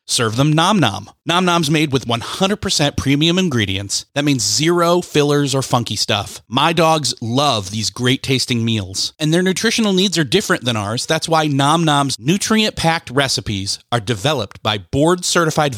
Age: 30-49